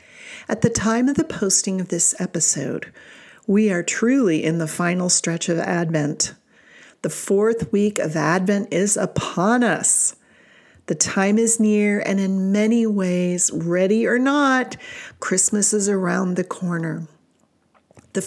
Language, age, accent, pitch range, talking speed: English, 40-59, American, 170-220 Hz, 140 wpm